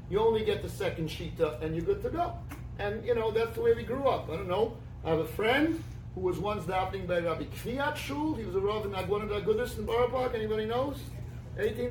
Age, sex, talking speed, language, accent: 40-59, male, 250 wpm, English, American